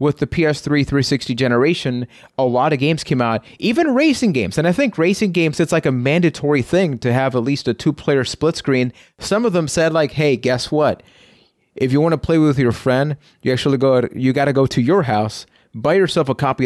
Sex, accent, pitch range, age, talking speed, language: male, American, 120-155 Hz, 30-49, 215 wpm, English